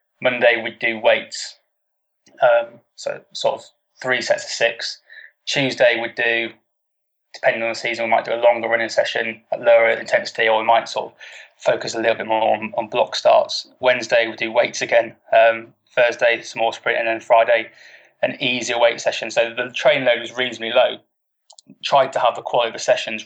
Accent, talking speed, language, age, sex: British, 195 wpm, English, 20-39, male